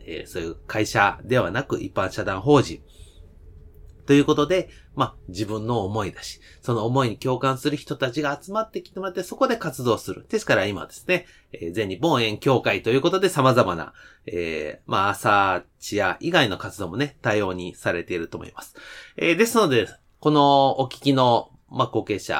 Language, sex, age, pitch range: Japanese, male, 30-49, 100-150 Hz